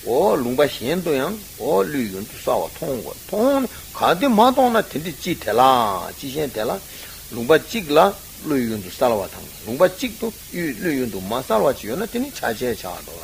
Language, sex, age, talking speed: Italian, male, 60-79, 55 wpm